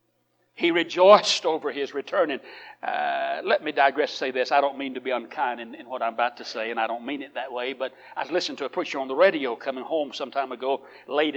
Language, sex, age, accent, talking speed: English, male, 60-79, American, 255 wpm